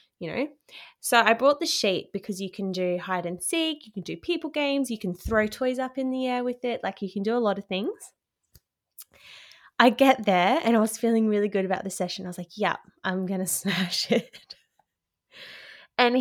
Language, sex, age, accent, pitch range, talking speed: English, female, 20-39, Australian, 190-240 Hz, 215 wpm